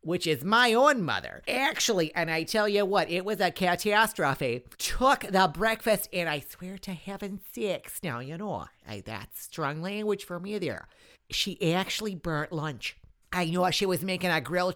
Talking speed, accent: 180 wpm, American